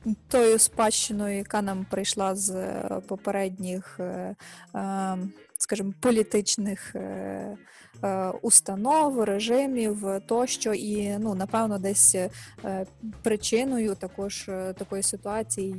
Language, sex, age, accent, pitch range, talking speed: Ukrainian, female, 20-39, native, 195-225 Hz, 75 wpm